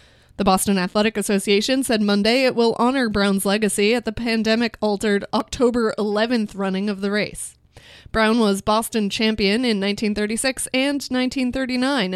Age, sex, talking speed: 20-39, female, 140 wpm